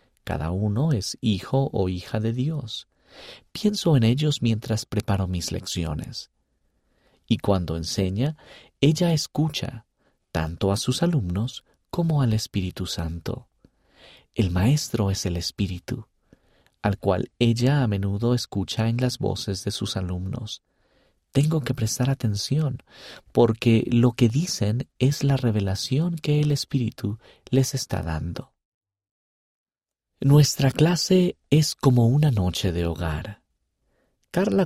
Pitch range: 95-135 Hz